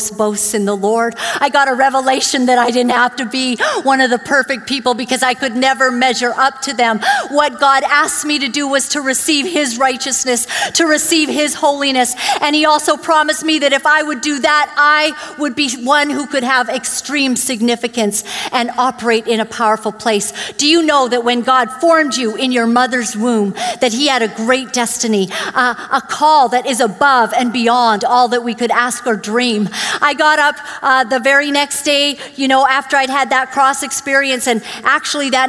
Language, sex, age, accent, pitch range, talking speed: English, female, 50-69, American, 245-290 Hz, 205 wpm